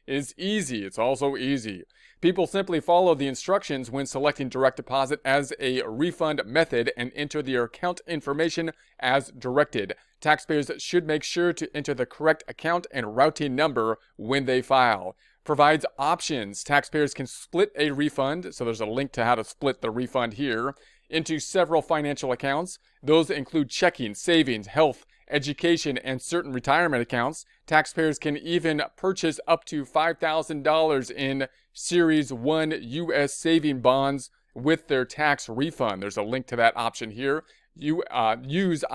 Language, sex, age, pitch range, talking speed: English, male, 40-59, 125-155 Hz, 155 wpm